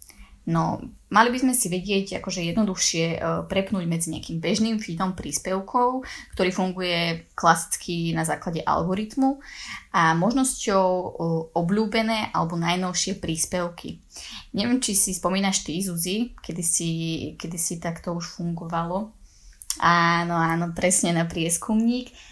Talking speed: 115 wpm